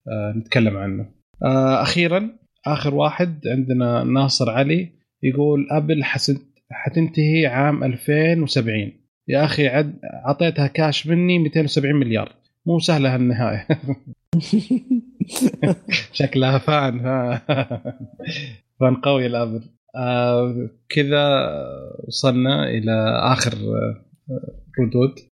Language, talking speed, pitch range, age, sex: Arabic, 85 wpm, 120-150 Hz, 20-39, male